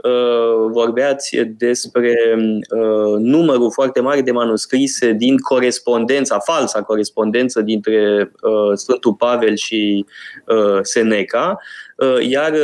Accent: native